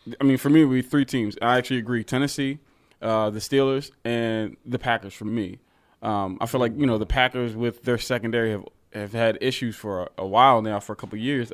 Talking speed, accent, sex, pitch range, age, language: 235 wpm, American, male, 105-125 Hz, 20-39, English